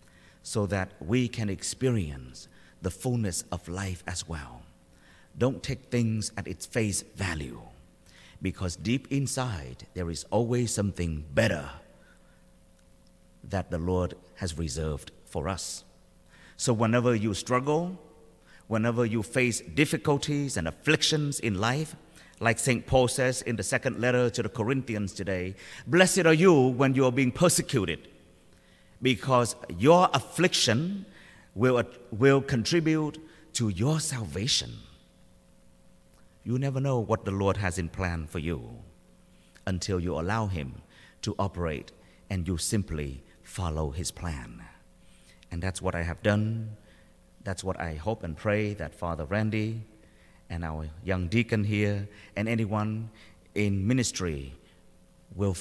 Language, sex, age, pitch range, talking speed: English, male, 50-69, 90-125 Hz, 130 wpm